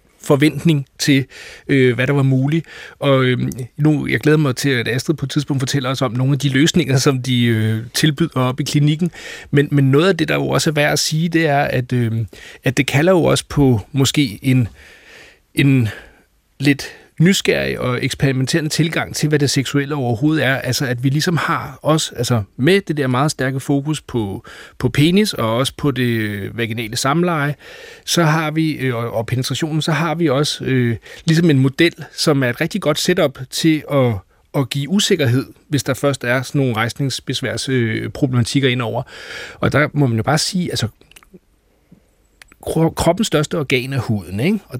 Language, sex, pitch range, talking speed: Danish, male, 125-155 Hz, 190 wpm